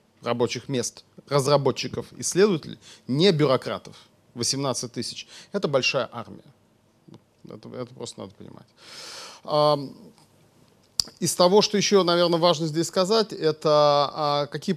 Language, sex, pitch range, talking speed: Russian, male, 125-170 Hz, 105 wpm